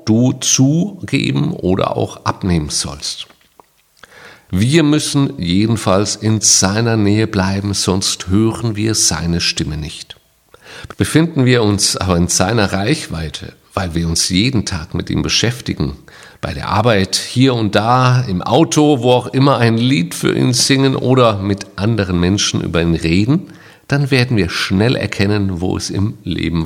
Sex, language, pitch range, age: male, German, 95-125 Hz, 50-69